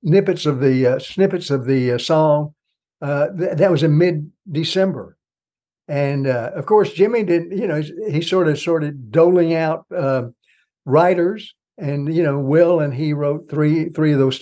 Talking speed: 175 wpm